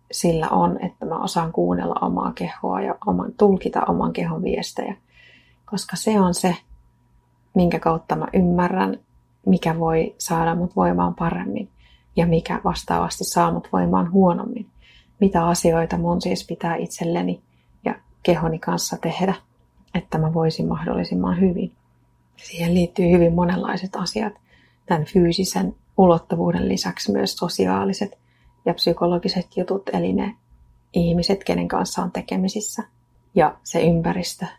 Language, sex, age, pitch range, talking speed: Finnish, female, 30-49, 120-185 Hz, 125 wpm